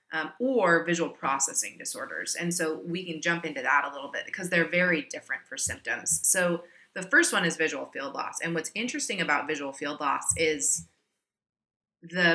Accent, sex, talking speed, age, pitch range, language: American, female, 185 wpm, 30-49, 155-180 Hz, English